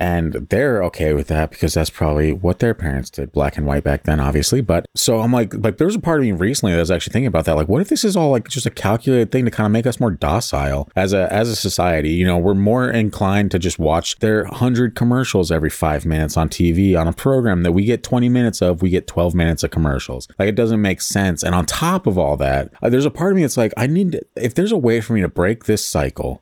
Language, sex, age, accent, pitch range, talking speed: English, male, 30-49, American, 80-115 Hz, 275 wpm